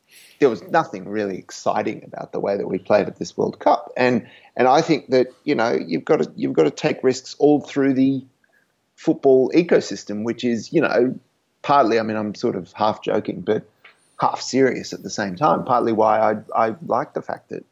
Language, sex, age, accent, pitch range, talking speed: English, male, 30-49, Australian, 105-130 Hz, 210 wpm